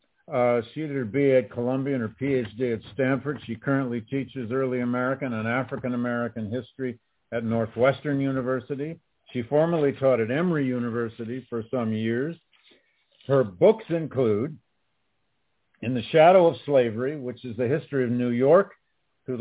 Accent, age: American, 50-69